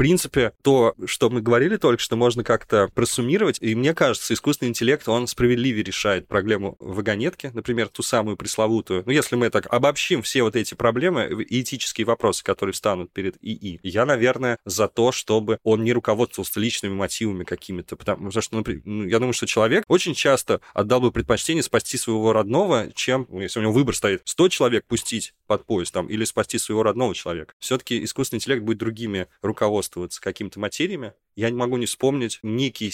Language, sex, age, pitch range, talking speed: Russian, male, 20-39, 105-125 Hz, 180 wpm